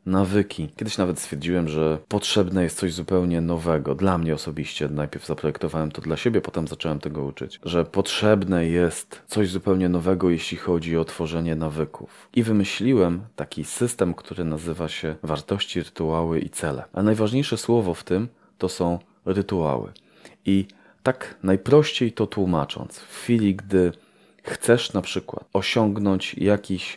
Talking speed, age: 145 wpm, 30-49